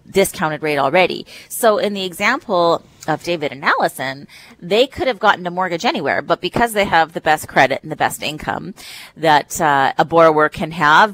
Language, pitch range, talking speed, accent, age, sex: English, 160-215 Hz, 190 wpm, American, 30-49, female